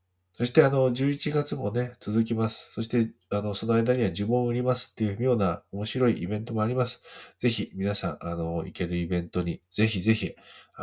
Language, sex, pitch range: Japanese, male, 85-115 Hz